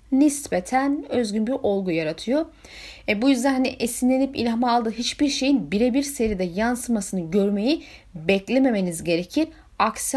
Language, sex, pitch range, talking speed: Turkish, female, 185-250 Hz, 125 wpm